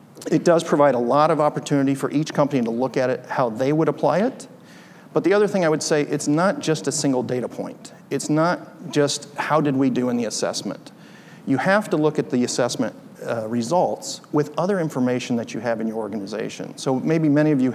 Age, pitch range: 40-59, 125-155 Hz